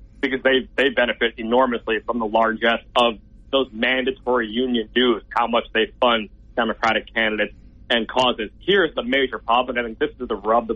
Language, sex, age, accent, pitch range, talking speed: English, male, 30-49, American, 115-135 Hz, 180 wpm